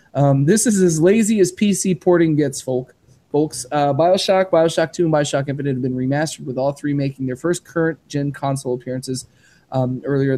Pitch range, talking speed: 130-155 Hz, 180 wpm